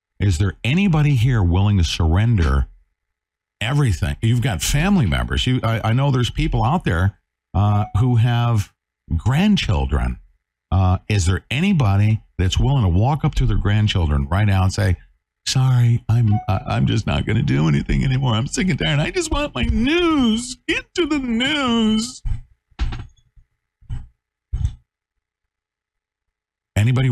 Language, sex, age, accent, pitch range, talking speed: English, male, 50-69, American, 75-120 Hz, 140 wpm